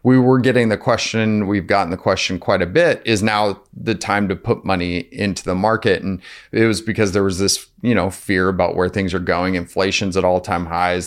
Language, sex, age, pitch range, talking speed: English, male, 30-49, 95-105 Hz, 220 wpm